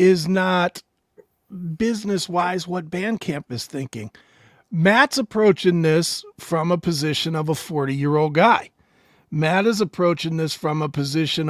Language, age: English, 40-59